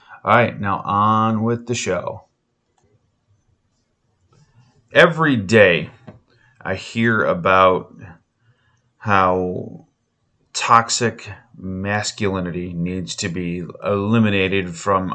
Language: English